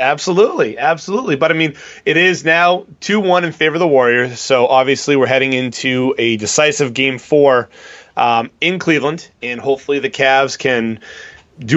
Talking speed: 170 wpm